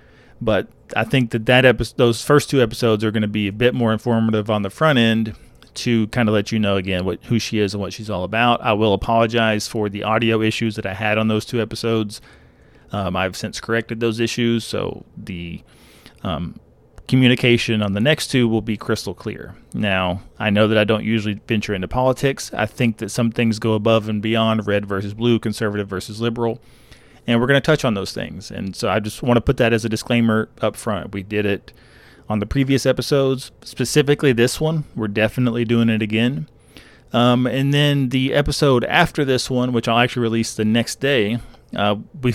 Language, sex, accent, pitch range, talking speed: English, male, American, 105-125 Hz, 210 wpm